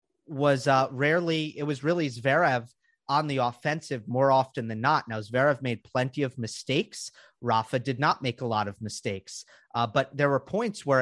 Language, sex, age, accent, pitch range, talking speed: English, male, 30-49, American, 115-140 Hz, 185 wpm